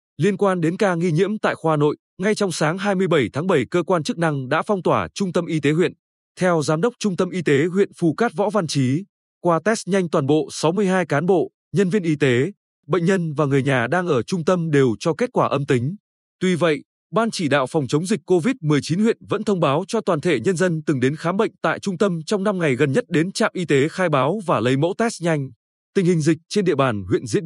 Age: 20-39